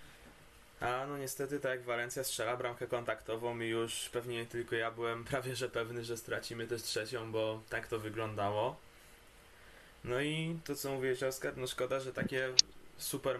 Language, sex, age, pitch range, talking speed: Polish, male, 20-39, 105-120 Hz, 160 wpm